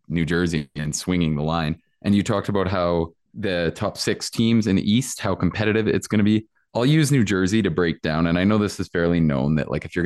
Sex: male